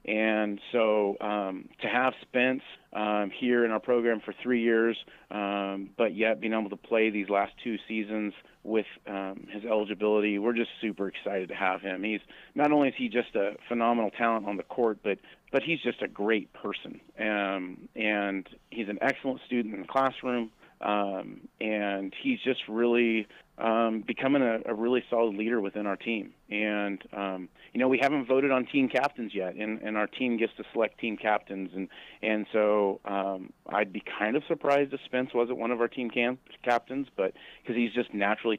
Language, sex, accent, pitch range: English, male, American, 100-115 Hz